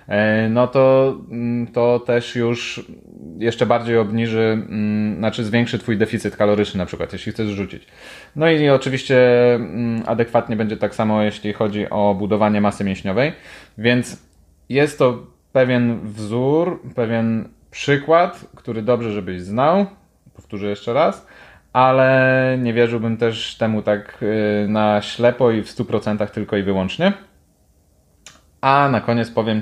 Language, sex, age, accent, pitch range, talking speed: Polish, male, 20-39, native, 105-125 Hz, 130 wpm